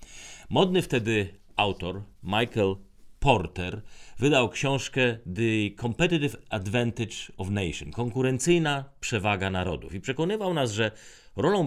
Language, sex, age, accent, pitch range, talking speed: Polish, male, 40-59, native, 95-135 Hz, 105 wpm